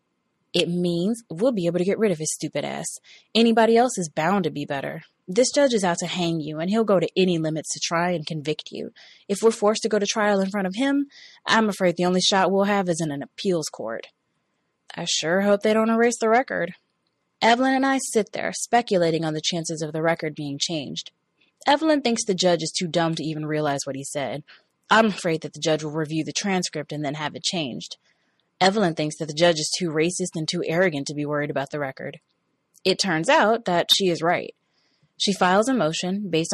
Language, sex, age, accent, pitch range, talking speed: English, female, 20-39, American, 155-205 Hz, 225 wpm